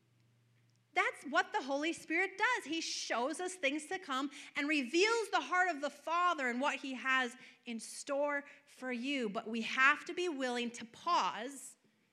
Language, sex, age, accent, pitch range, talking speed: English, female, 30-49, American, 230-315 Hz, 175 wpm